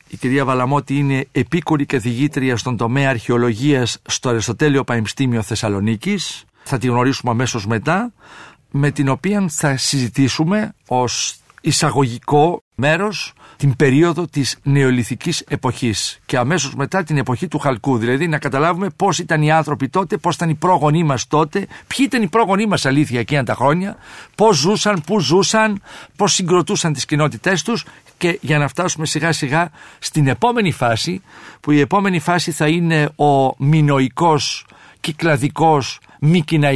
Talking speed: 145 wpm